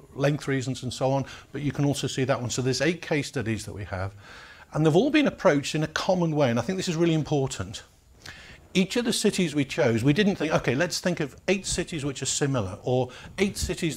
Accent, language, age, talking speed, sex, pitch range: British, English, 50-69, 245 wpm, male, 120-155 Hz